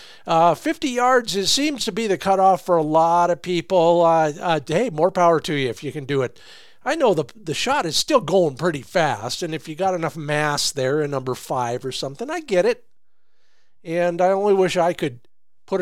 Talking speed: 220 wpm